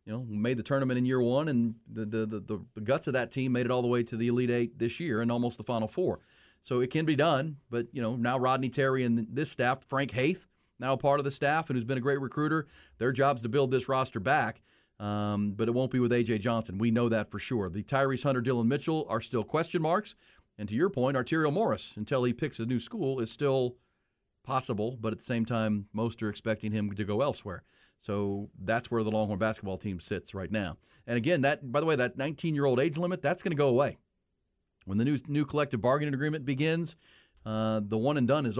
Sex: male